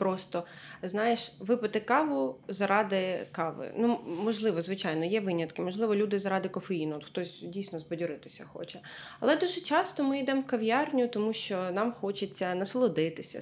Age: 20-39